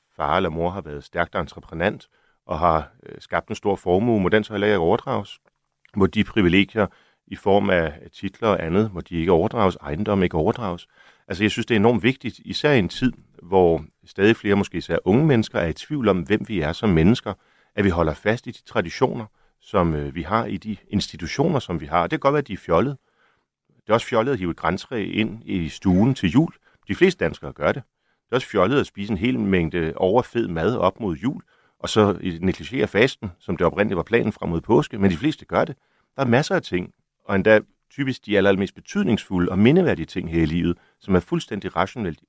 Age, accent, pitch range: 40-59, native, 85-110 Hz